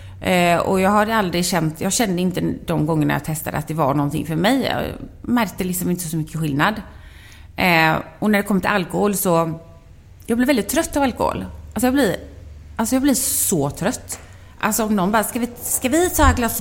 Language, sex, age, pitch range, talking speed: Swedish, female, 30-49, 165-235 Hz, 215 wpm